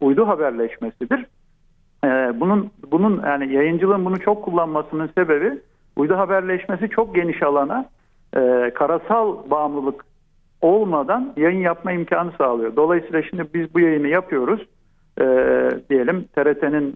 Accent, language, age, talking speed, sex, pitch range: native, Turkish, 50-69, 115 wpm, male, 135-170 Hz